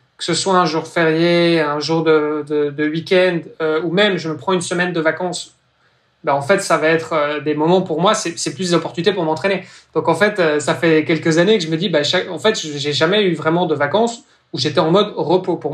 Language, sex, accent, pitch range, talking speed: French, male, French, 150-180 Hz, 240 wpm